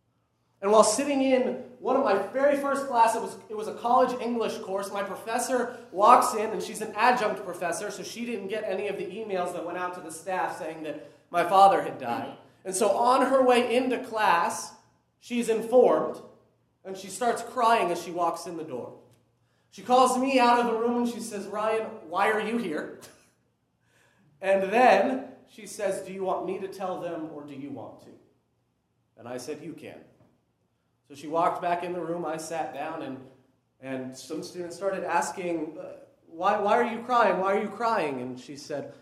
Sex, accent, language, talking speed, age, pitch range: male, American, English, 200 wpm, 30-49, 170-240 Hz